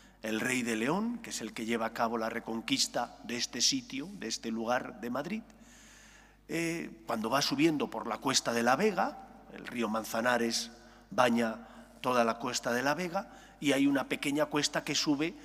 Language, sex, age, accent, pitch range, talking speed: English, male, 40-59, Spanish, 120-195 Hz, 185 wpm